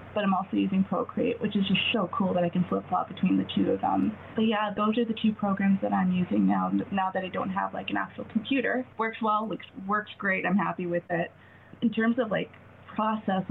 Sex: female